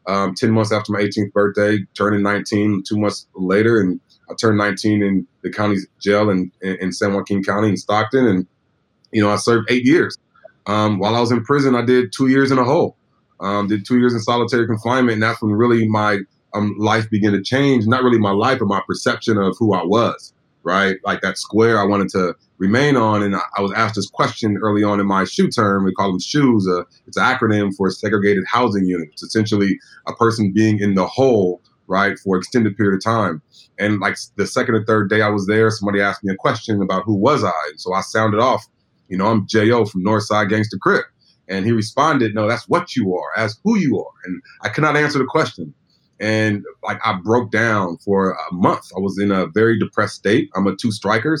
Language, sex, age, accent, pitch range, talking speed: English, male, 30-49, American, 100-115 Hz, 220 wpm